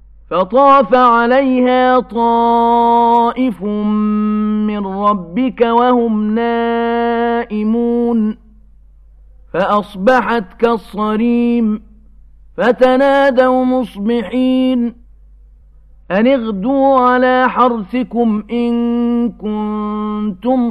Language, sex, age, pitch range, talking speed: Arabic, male, 50-69, 210-255 Hz, 50 wpm